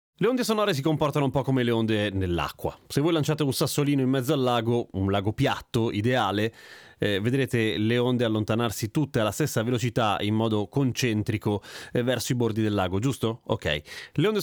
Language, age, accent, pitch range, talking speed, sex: Italian, 30-49, native, 105-145 Hz, 190 wpm, male